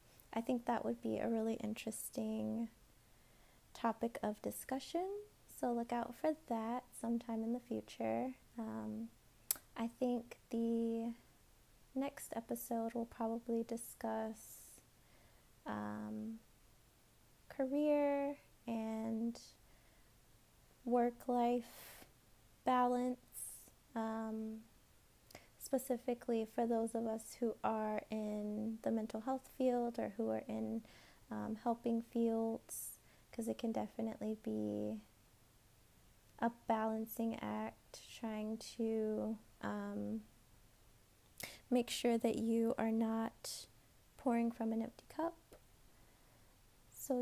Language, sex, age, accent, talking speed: English, female, 20-39, American, 95 wpm